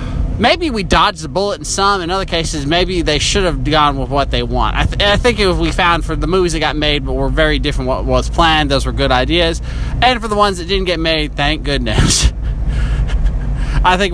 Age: 20-39